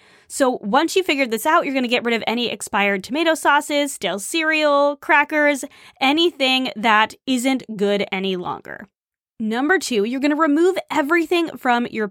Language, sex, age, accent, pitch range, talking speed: English, female, 20-39, American, 210-295 Hz, 160 wpm